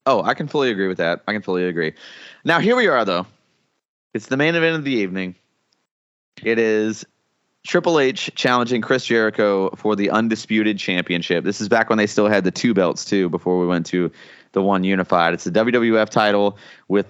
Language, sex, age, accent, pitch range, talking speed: English, male, 30-49, American, 100-125 Hz, 200 wpm